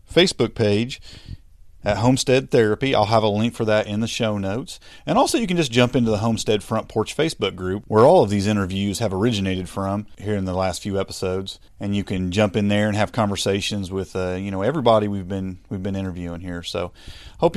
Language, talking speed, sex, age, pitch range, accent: English, 220 wpm, male, 30-49, 95-125 Hz, American